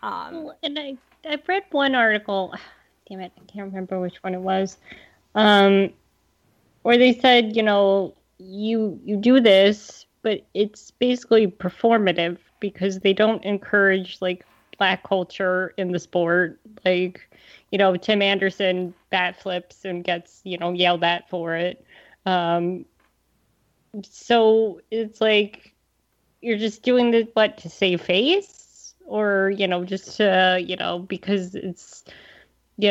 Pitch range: 180-220 Hz